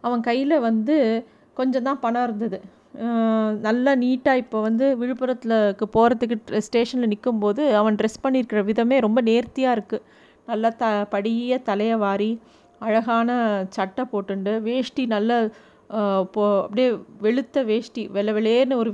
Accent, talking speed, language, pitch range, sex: native, 110 wpm, Tamil, 210-245 Hz, female